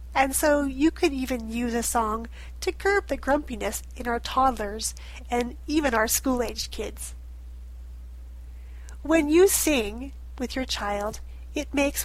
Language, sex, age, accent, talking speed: English, female, 40-59, American, 140 wpm